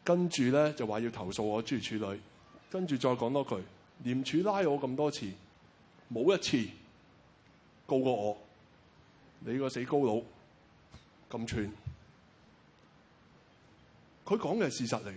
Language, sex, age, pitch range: Chinese, male, 20-39, 110-150 Hz